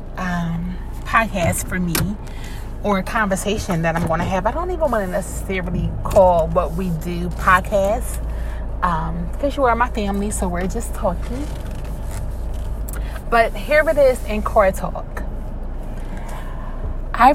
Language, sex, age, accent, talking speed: English, female, 20-39, American, 140 wpm